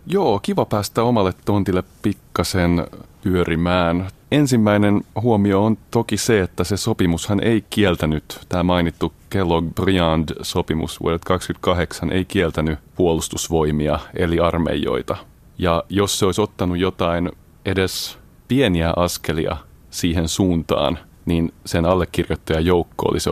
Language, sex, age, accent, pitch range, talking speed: Finnish, male, 30-49, native, 80-100 Hz, 110 wpm